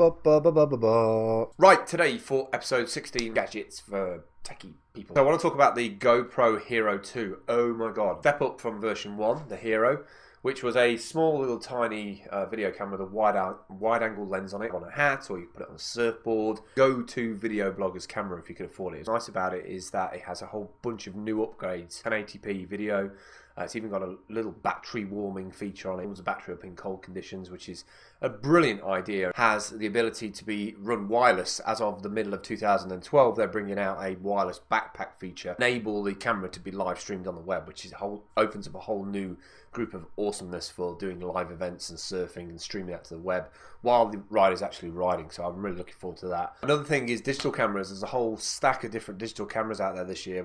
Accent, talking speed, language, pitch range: British, 225 wpm, English, 95-115 Hz